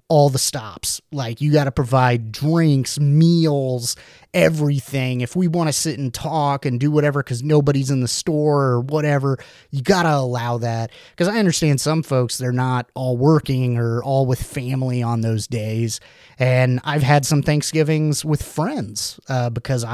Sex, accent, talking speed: male, American, 175 wpm